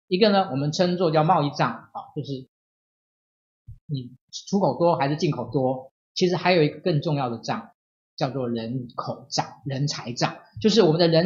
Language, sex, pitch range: Chinese, male, 135-185 Hz